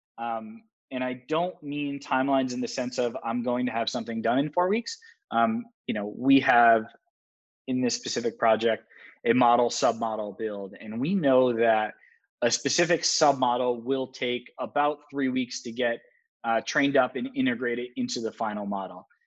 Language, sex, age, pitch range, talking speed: English, male, 20-39, 115-145 Hz, 170 wpm